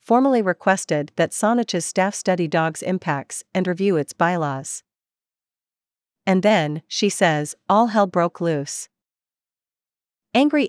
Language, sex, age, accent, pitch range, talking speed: English, female, 40-59, American, 160-200 Hz, 120 wpm